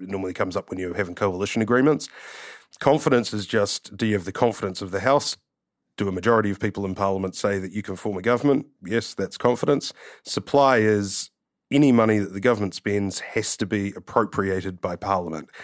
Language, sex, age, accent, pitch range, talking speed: English, male, 30-49, Australian, 95-115 Hz, 195 wpm